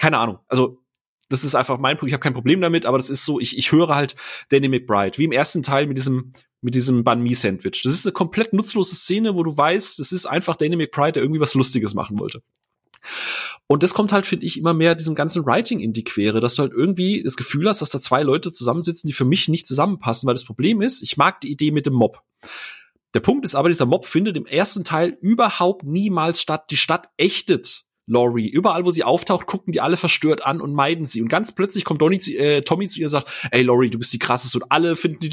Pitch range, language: 130-170 Hz, German